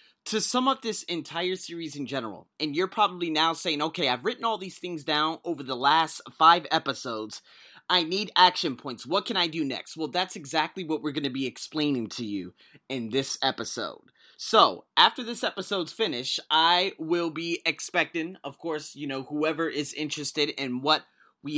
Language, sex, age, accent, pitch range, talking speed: English, male, 30-49, American, 140-185 Hz, 185 wpm